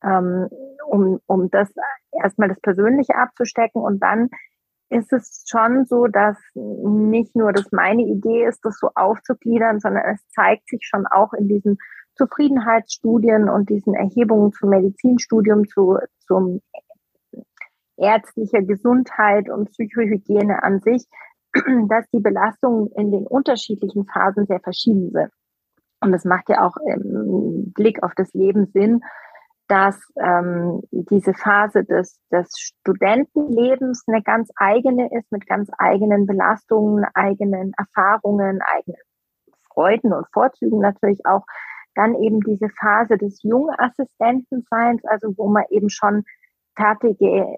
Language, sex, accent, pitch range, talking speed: German, female, German, 200-235 Hz, 125 wpm